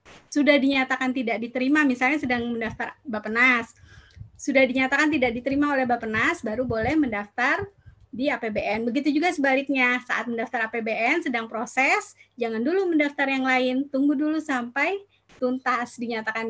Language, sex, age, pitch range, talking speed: Indonesian, female, 20-39, 240-300 Hz, 135 wpm